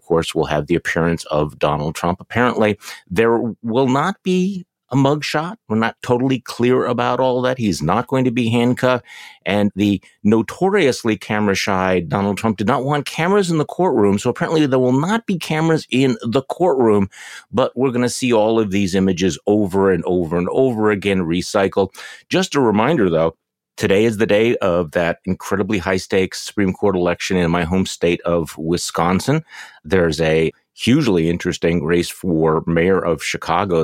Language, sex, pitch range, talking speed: English, male, 85-125 Hz, 175 wpm